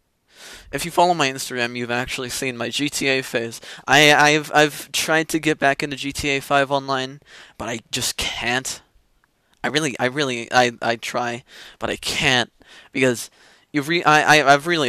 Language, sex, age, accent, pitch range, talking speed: English, male, 20-39, American, 120-150 Hz, 175 wpm